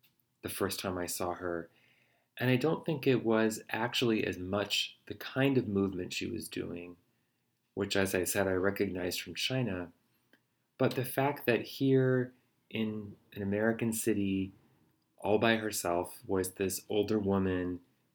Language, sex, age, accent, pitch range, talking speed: English, male, 30-49, American, 95-115 Hz, 150 wpm